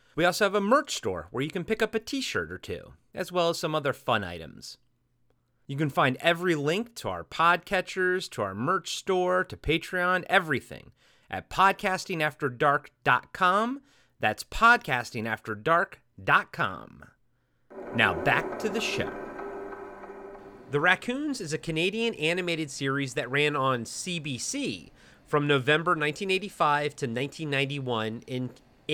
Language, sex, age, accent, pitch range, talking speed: English, male, 30-49, American, 135-195 Hz, 130 wpm